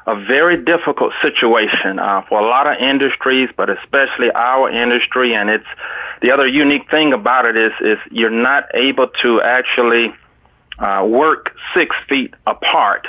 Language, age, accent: English, 30-49, American